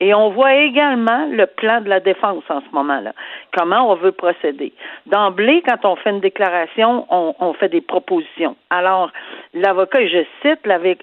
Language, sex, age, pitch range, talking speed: French, female, 50-69, 175-245 Hz, 175 wpm